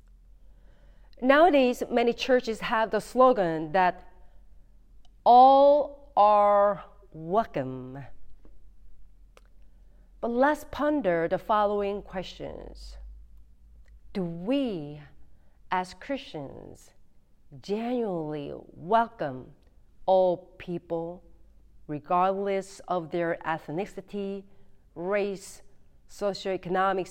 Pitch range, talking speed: 175-235 Hz, 65 wpm